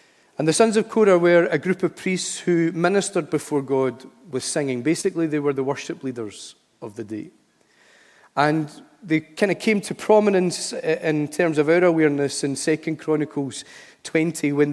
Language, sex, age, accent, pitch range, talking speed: English, male, 40-59, British, 135-165 Hz, 170 wpm